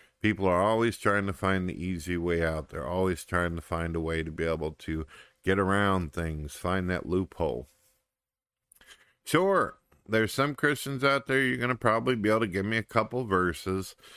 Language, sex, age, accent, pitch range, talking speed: English, male, 50-69, American, 85-100 Hz, 190 wpm